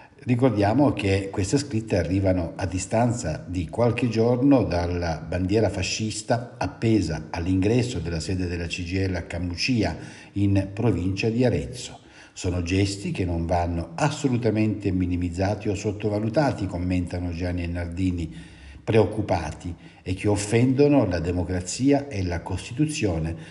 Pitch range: 90-125 Hz